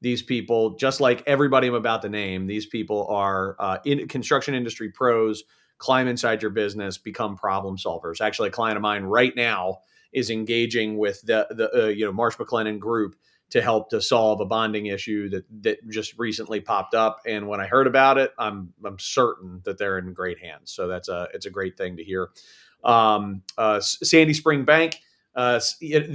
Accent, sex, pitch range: American, male, 100-135 Hz